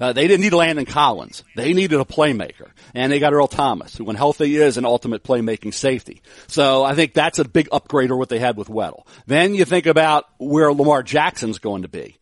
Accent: American